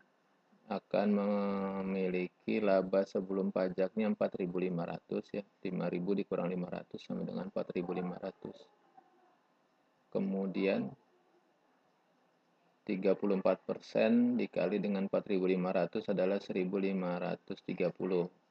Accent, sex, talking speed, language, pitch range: native, male, 65 wpm, Indonesian, 95-120 Hz